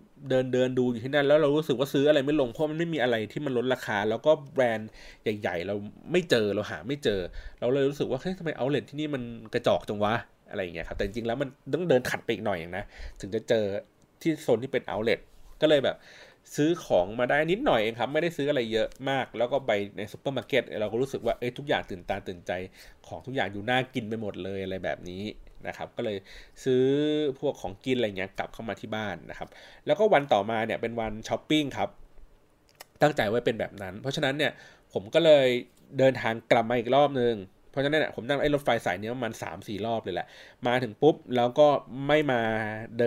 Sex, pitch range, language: male, 110-145 Hz, Thai